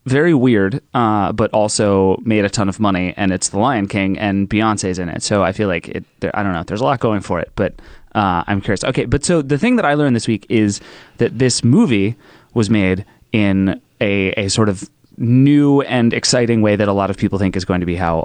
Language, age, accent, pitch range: English, 30-49, American, 95-120 Hz